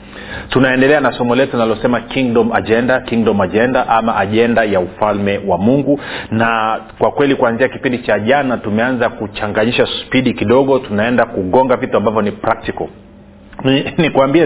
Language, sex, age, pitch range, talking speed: Swahili, male, 40-59, 110-145 Hz, 135 wpm